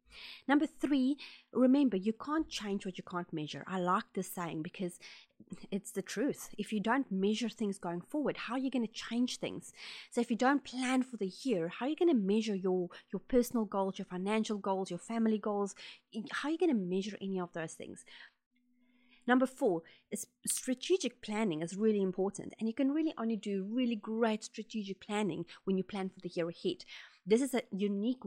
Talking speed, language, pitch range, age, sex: 200 wpm, English, 180-235 Hz, 30-49, female